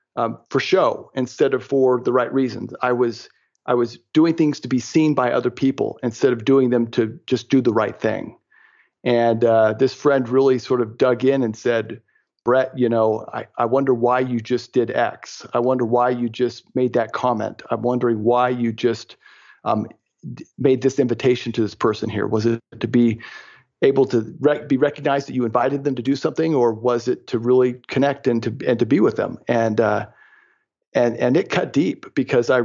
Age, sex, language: 40-59, male, English